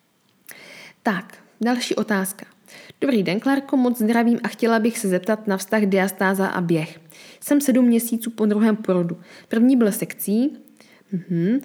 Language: Czech